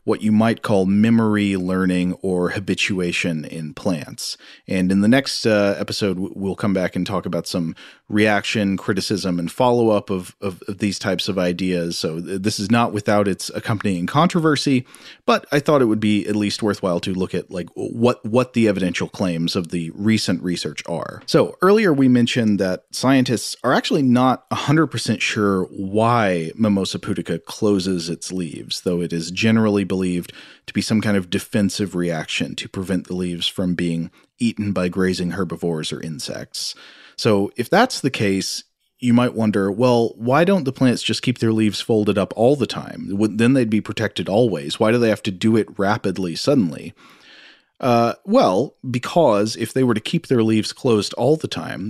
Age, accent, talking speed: 30-49, American, 180 wpm